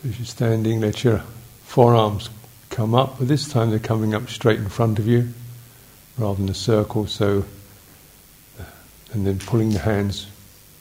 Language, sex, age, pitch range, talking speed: English, male, 50-69, 100-120 Hz, 160 wpm